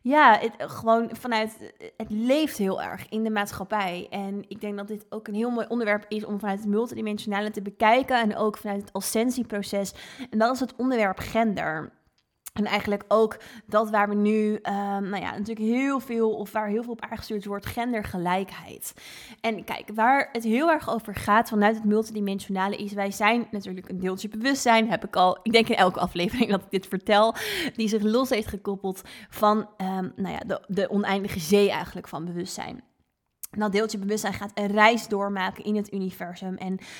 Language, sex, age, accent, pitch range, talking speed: Dutch, female, 20-39, Dutch, 195-225 Hz, 190 wpm